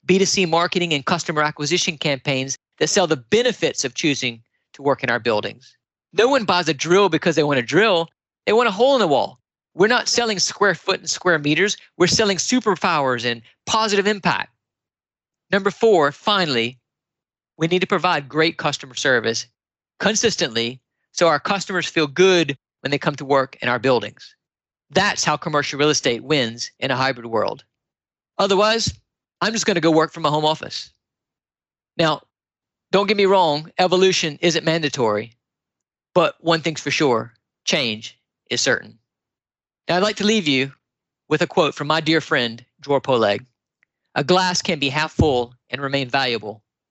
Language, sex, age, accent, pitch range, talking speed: English, male, 40-59, American, 135-185 Hz, 170 wpm